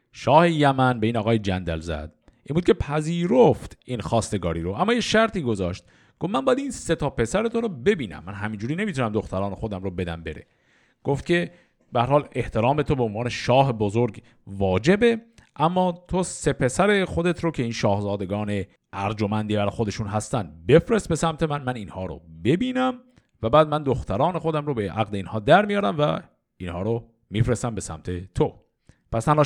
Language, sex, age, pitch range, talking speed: Persian, male, 50-69, 100-160 Hz, 185 wpm